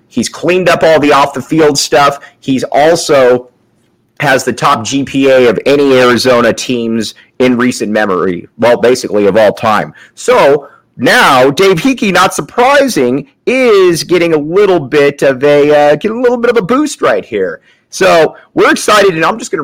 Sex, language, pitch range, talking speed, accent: male, English, 130-170 Hz, 165 wpm, American